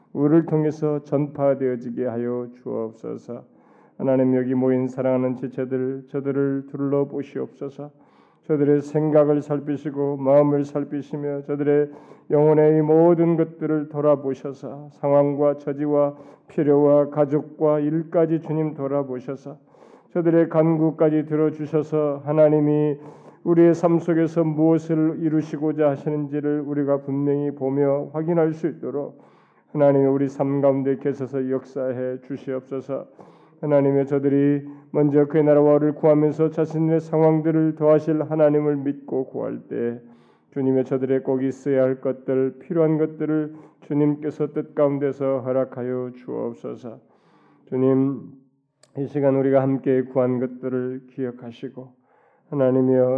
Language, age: Korean, 40-59